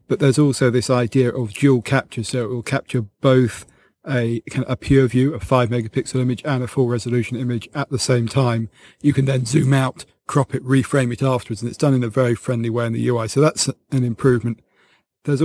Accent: British